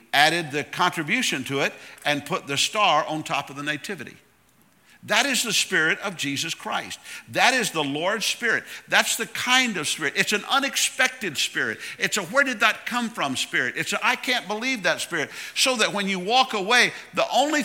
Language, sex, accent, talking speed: English, male, American, 195 wpm